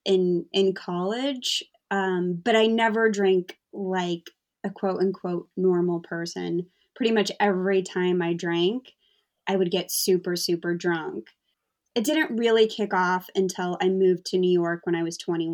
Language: English